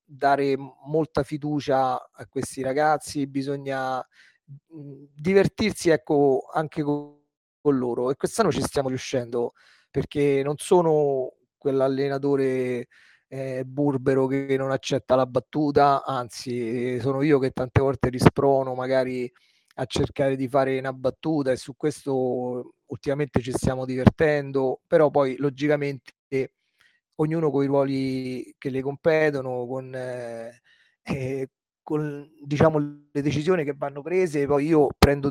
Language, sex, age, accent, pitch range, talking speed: Italian, male, 30-49, native, 130-150 Hz, 120 wpm